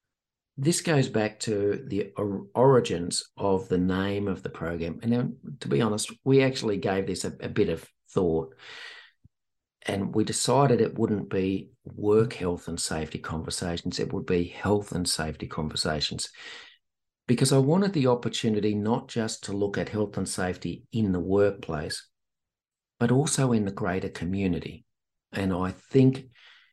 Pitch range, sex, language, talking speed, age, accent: 95-125 Hz, male, English, 155 wpm, 50-69, Australian